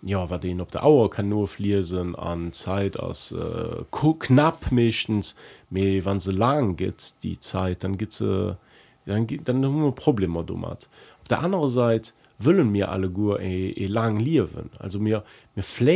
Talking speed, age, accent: 160 wpm, 40-59, German